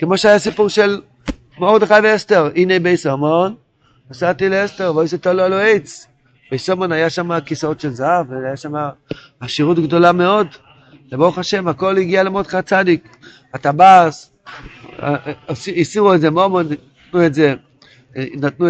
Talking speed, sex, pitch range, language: 110 wpm, male, 135-185 Hz, Hebrew